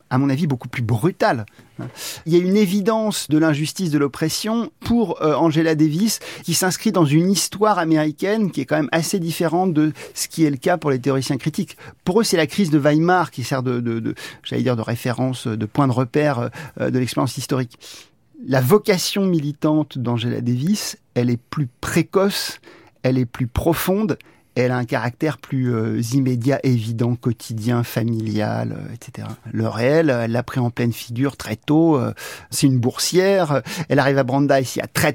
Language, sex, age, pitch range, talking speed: French, male, 40-59, 120-160 Hz, 185 wpm